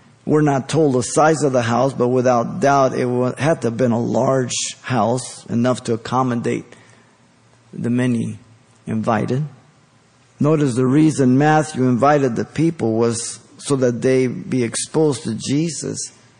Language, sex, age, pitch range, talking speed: English, male, 50-69, 120-150 Hz, 145 wpm